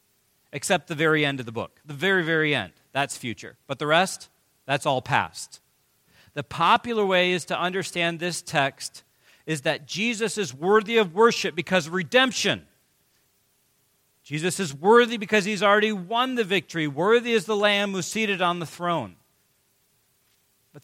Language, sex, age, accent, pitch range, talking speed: English, male, 40-59, American, 135-180 Hz, 160 wpm